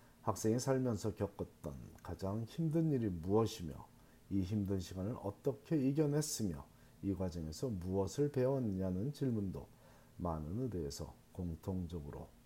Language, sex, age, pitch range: Korean, male, 40-59, 90-125 Hz